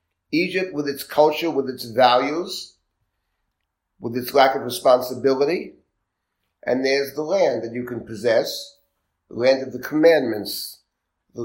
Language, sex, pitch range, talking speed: English, male, 115-145 Hz, 135 wpm